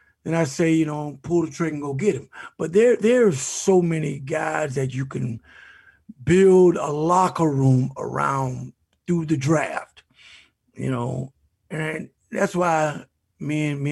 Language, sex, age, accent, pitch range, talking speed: English, male, 50-69, American, 135-185 Hz, 160 wpm